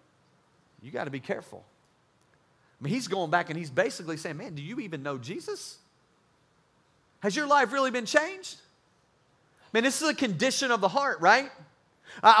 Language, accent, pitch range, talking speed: English, American, 155-255 Hz, 180 wpm